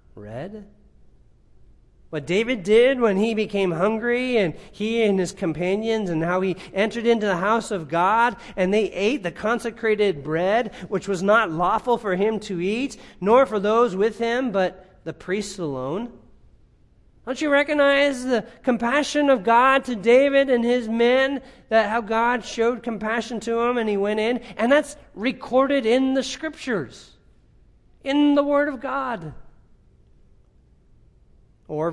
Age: 40-59